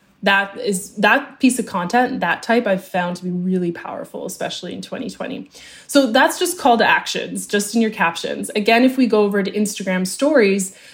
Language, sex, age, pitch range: English, female, 20-39, 190-250 Hz